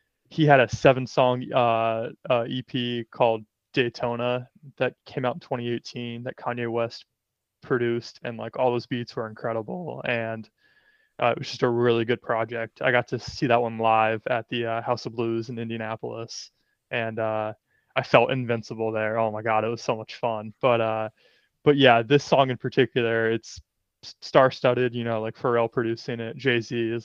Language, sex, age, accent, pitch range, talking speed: English, male, 20-39, American, 115-125 Hz, 180 wpm